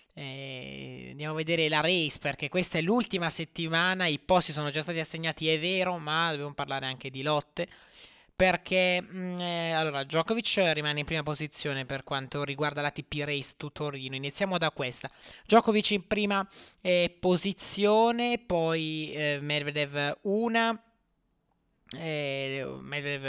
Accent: native